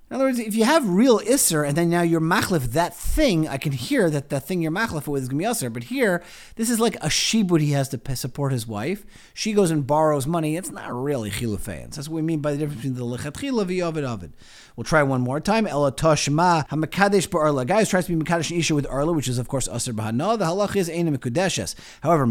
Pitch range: 125-185 Hz